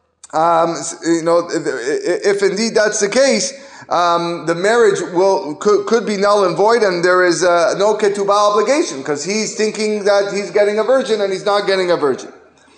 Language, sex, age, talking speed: English, male, 30-49, 190 wpm